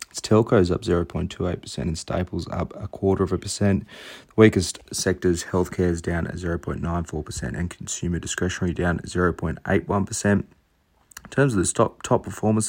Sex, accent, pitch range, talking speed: male, Australian, 90-100 Hz, 155 wpm